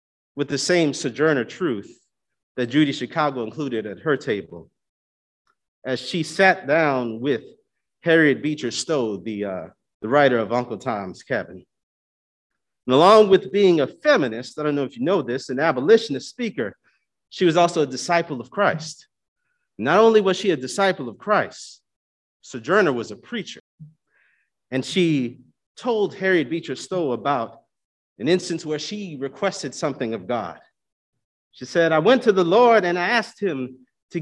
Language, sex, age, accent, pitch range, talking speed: English, male, 40-59, American, 120-190 Hz, 160 wpm